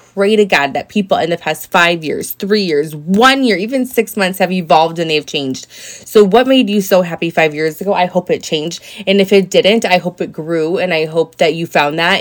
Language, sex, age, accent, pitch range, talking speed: English, female, 20-39, American, 170-215 Hz, 245 wpm